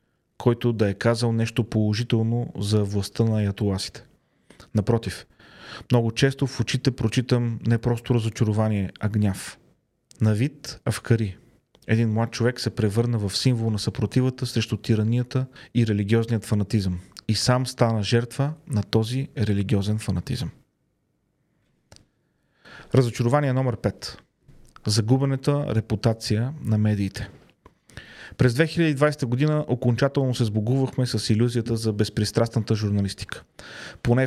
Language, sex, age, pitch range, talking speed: Bulgarian, male, 30-49, 110-130 Hz, 110 wpm